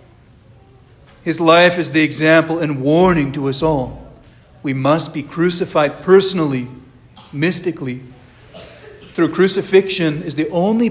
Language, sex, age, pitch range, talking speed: English, male, 40-59, 125-160 Hz, 115 wpm